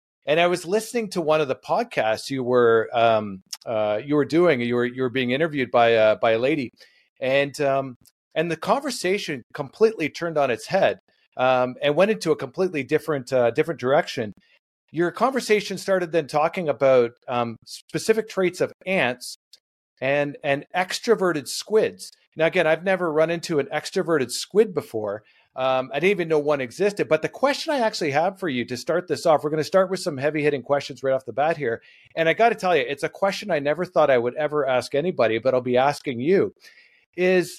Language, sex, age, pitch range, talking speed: English, male, 40-59, 135-190 Hz, 205 wpm